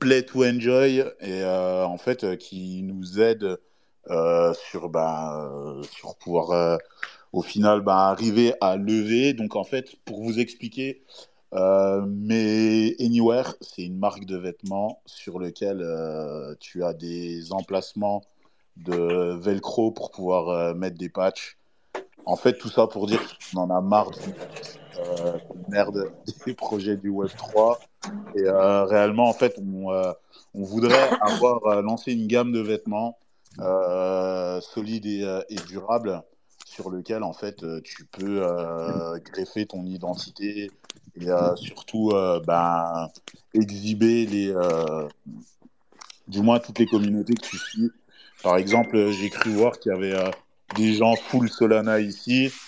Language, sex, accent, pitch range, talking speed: French, male, French, 90-110 Hz, 150 wpm